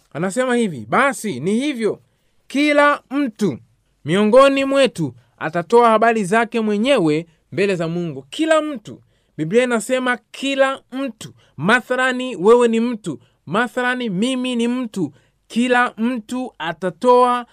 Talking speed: 115 wpm